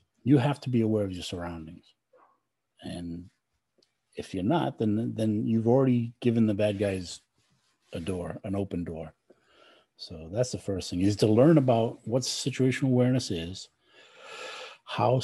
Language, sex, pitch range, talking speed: English, male, 95-125 Hz, 155 wpm